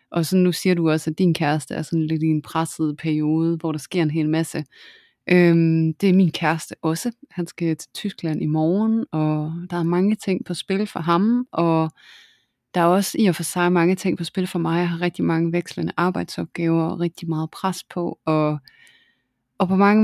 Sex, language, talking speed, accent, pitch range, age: female, Danish, 215 wpm, native, 165-185 Hz, 20-39